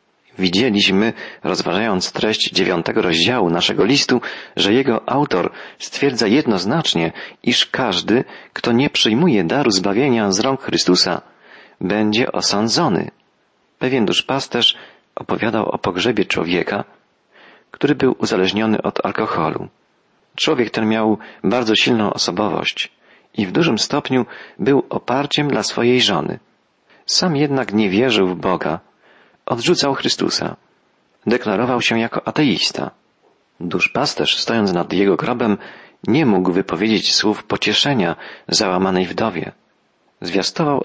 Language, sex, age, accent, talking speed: Polish, male, 40-59, native, 110 wpm